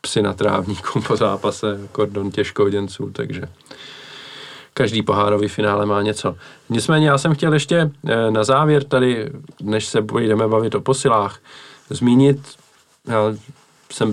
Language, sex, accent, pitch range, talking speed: Czech, male, native, 105-135 Hz, 125 wpm